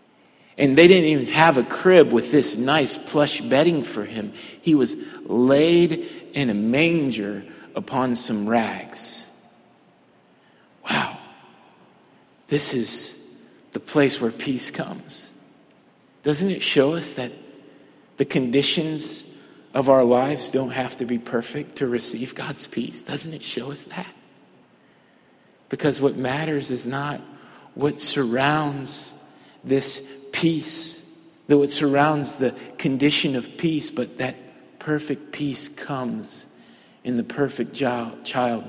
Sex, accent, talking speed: male, American, 125 wpm